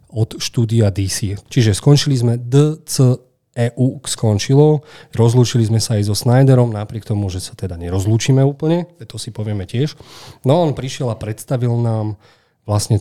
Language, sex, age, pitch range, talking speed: Slovak, male, 40-59, 110-130 Hz, 150 wpm